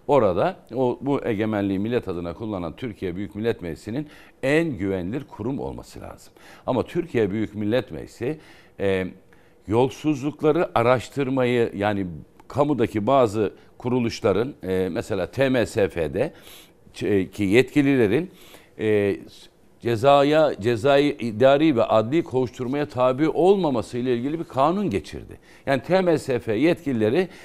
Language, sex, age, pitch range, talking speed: Turkish, male, 60-79, 110-155 Hz, 110 wpm